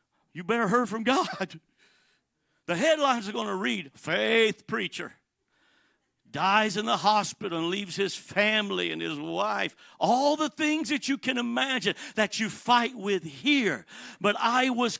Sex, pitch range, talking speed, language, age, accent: male, 170-235 Hz, 155 wpm, English, 60-79, American